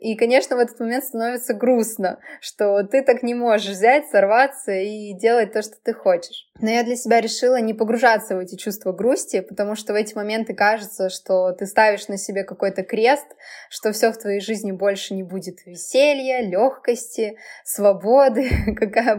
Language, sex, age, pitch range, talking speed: Russian, female, 20-39, 195-235 Hz, 175 wpm